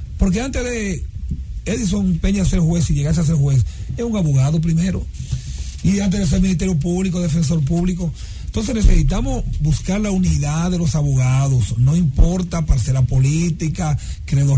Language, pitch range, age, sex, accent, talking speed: English, 130-180 Hz, 40-59, male, American, 155 wpm